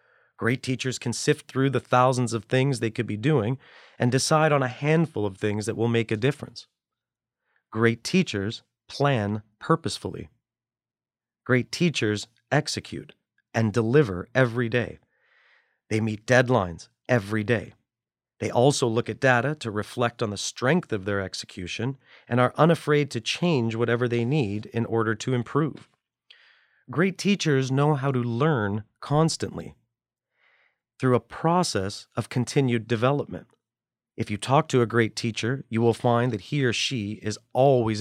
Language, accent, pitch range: English, American, 110-135 Hz